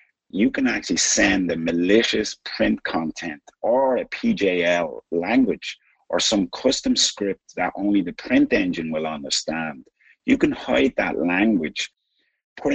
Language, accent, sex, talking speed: English, American, male, 135 wpm